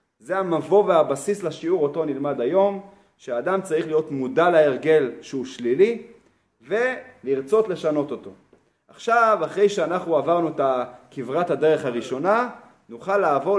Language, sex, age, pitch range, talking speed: Hebrew, male, 30-49, 155-210 Hz, 120 wpm